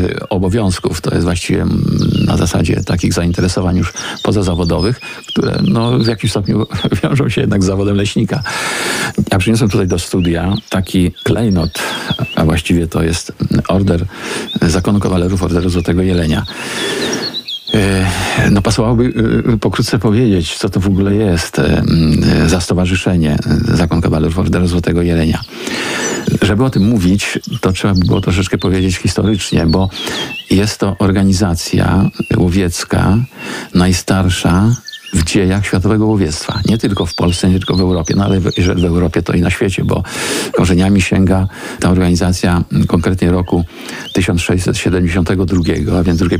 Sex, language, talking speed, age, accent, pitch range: male, Polish, 135 wpm, 50-69, native, 90-100 Hz